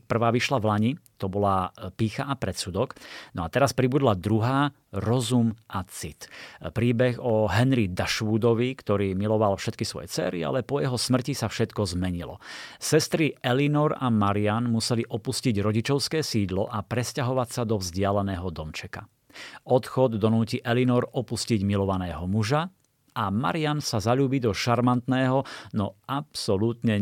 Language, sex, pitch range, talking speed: Slovak, male, 100-125 Hz, 135 wpm